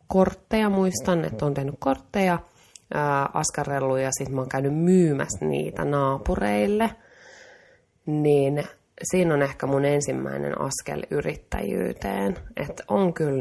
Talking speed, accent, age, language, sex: 120 wpm, native, 30-49, Finnish, female